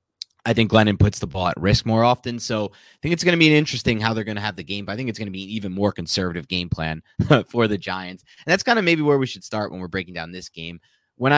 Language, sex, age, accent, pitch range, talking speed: English, male, 30-49, American, 90-125 Hz, 305 wpm